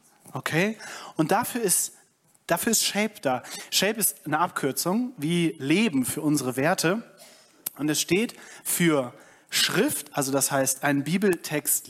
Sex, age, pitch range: male, 30-49, 150-195 Hz